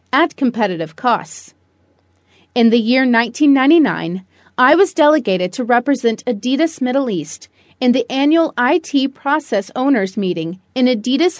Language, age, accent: English, 30-49, American